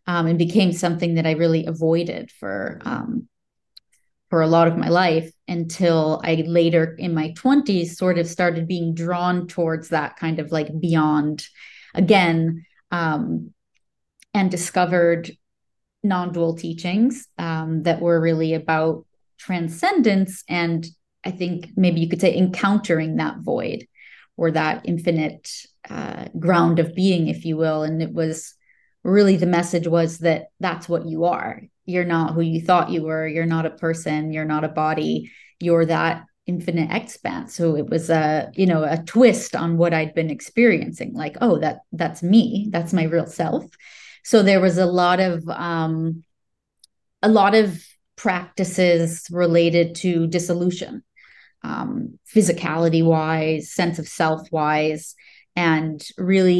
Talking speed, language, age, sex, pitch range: 150 wpm, English, 30-49, female, 160-180 Hz